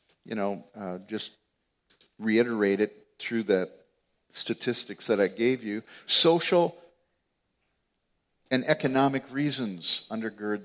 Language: English